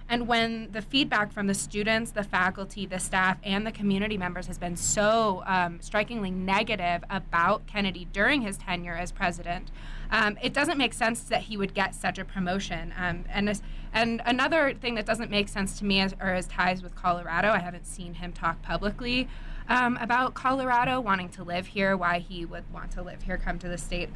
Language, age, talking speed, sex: English, 20-39, 205 wpm, female